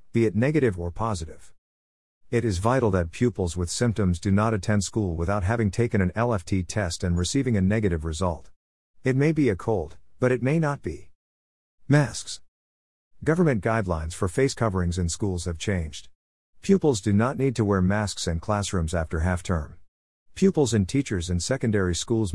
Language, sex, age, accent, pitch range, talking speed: English, male, 50-69, American, 85-110 Hz, 170 wpm